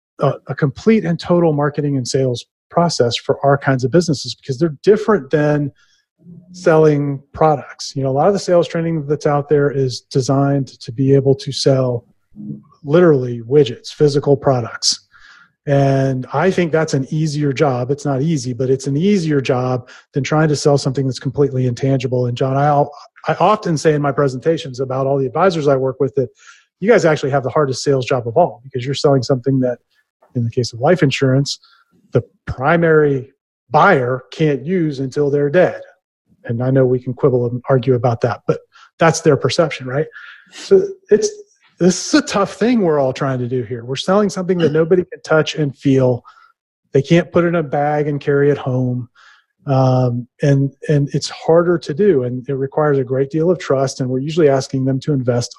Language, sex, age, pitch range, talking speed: English, male, 30-49, 130-160 Hz, 195 wpm